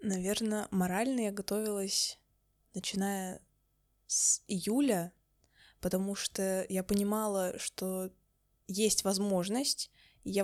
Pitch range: 190-215 Hz